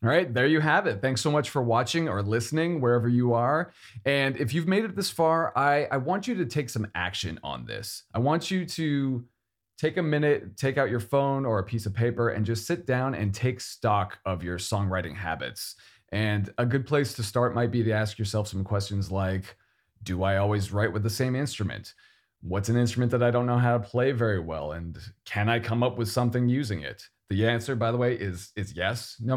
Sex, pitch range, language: male, 100-130 Hz, English